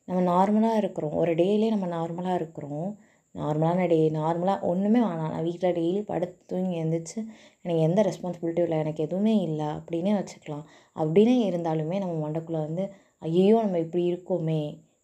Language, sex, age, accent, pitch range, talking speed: Tamil, female, 20-39, native, 160-195 Hz, 130 wpm